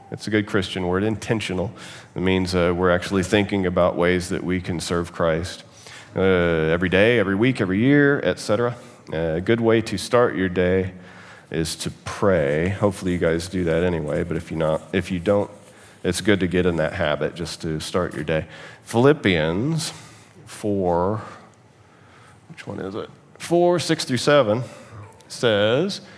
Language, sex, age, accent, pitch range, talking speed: English, male, 40-59, American, 90-125 Hz, 170 wpm